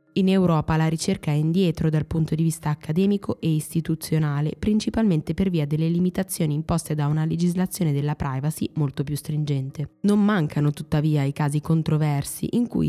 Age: 20-39